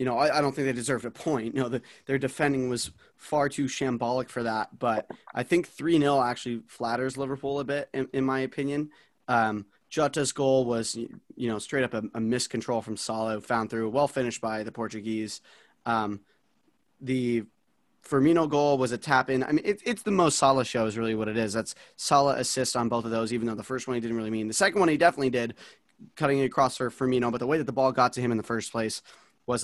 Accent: American